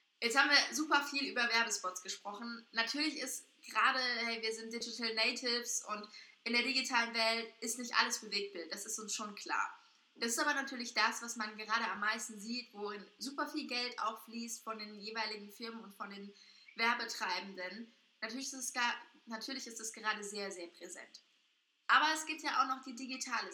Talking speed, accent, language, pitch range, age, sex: 185 wpm, German, German, 215-260 Hz, 20-39, female